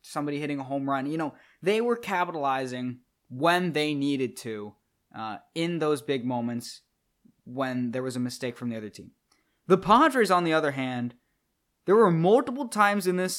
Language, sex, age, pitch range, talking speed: English, male, 20-39, 140-190 Hz, 180 wpm